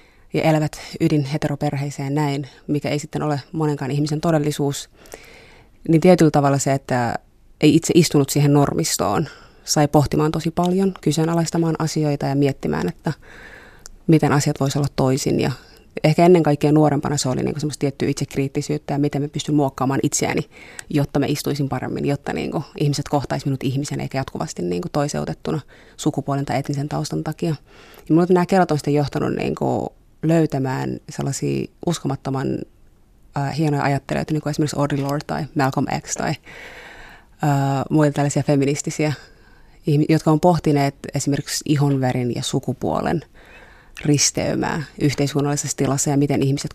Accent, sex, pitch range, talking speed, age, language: native, female, 140-155 Hz, 140 wpm, 30-49, Finnish